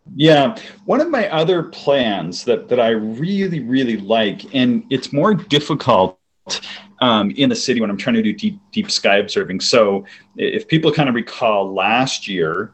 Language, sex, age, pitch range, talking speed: English, male, 30-49, 95-150 Hz, 175 wpm